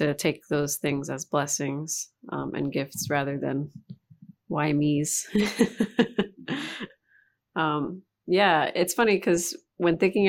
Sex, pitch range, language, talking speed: female, 150-180 Hz, English, 115 wpm